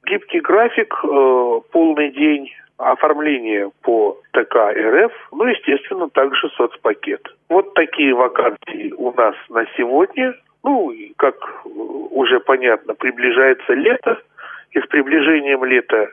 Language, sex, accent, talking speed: Russian, male, native, 110 wpm